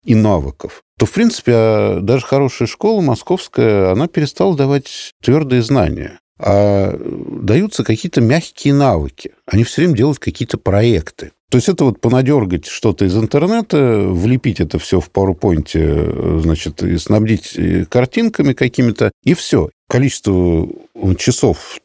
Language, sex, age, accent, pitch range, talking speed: Russian, male, 50-69, native, 95-140 Hz, 130 wpm